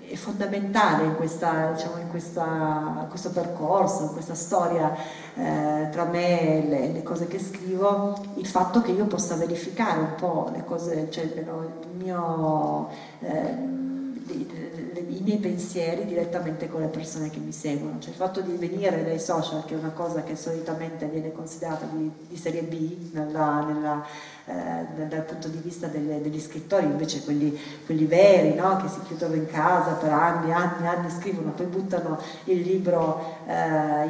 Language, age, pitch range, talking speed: Italian, 40-59, 155-180 Hz, 170 wpm